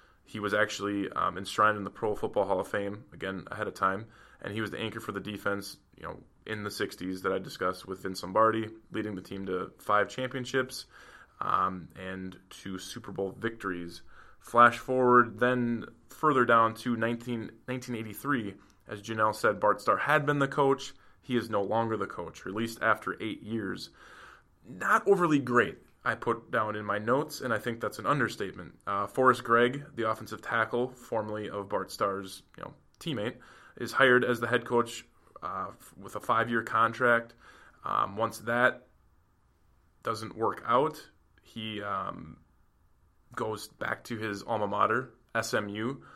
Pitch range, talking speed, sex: 100-120 Hz, 165 wpm, male